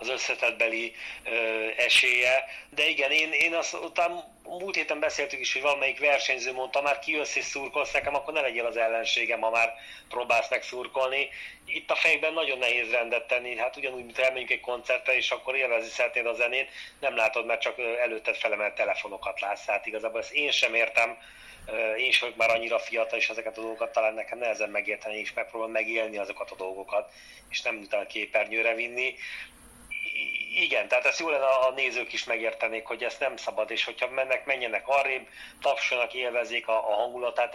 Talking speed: 180 wpm